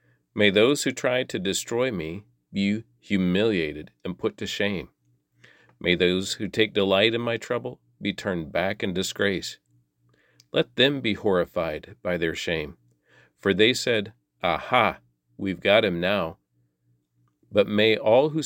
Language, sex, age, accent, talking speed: English, male, 40-59, American, 145 wpm